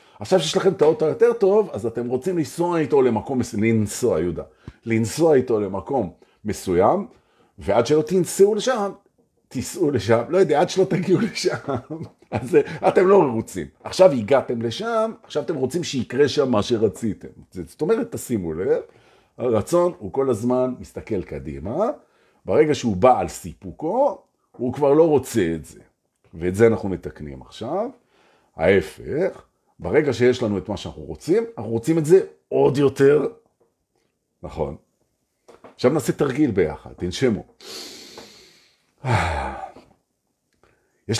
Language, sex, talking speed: Hebrew, male, 100 wpm